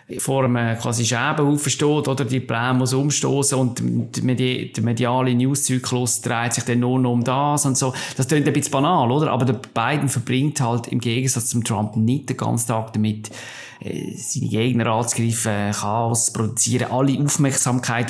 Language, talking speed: German, 165 wpm